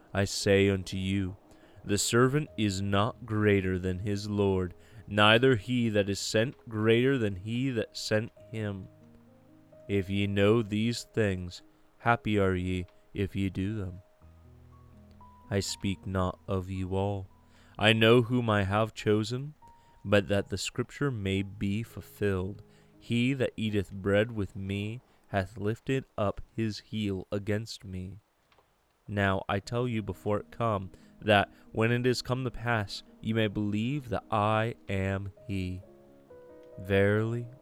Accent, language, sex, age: American, English, male, 20-39